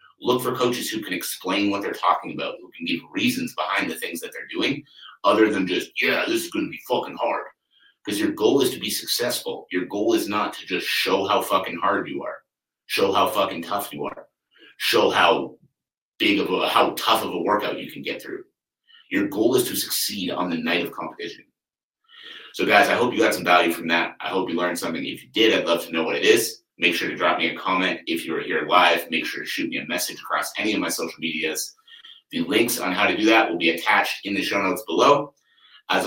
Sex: male